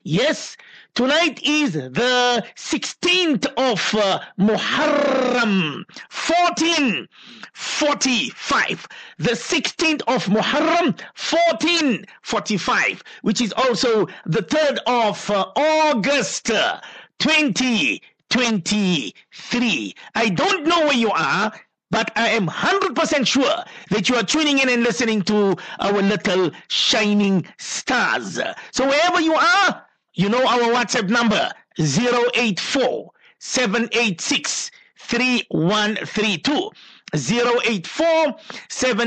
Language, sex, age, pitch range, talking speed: English, male, 50-69, 210-275 Hz, 85 wpm